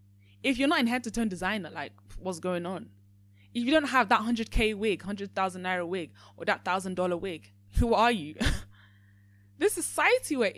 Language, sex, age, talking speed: English, female, 20-39, 175 wpm